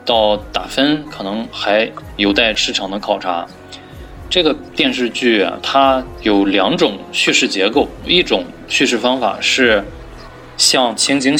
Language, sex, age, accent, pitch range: Chinese, male, 20-39, native, 95-120 Hz